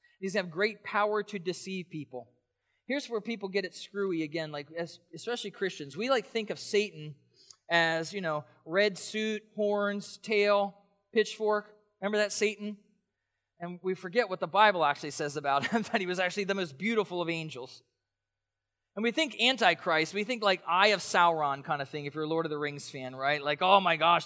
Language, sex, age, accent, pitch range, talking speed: English, male, 20-39, American, 180-255 Hz, 195 wpm